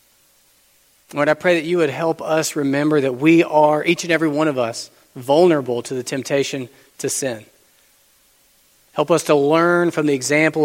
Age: 40-59